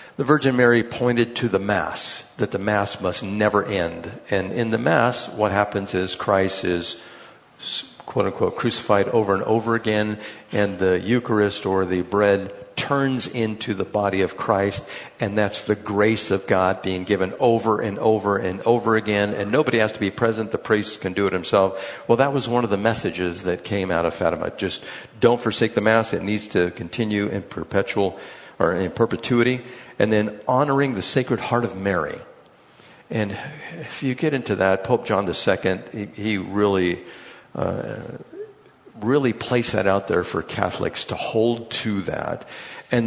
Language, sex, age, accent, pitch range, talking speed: English, male, 50-69, American, 95-115 Hz, 175 wpm